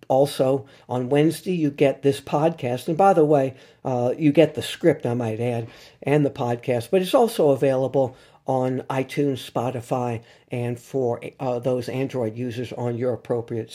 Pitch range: 125-155 Hz